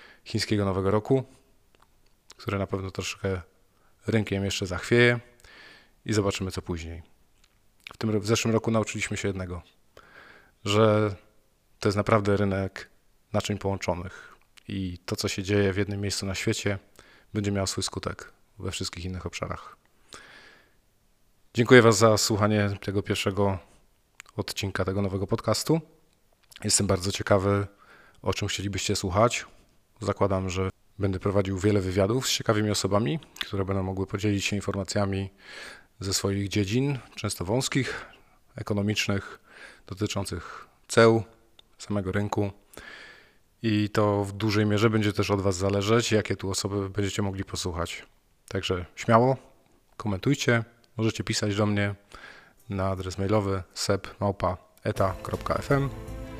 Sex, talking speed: male, 125 wpm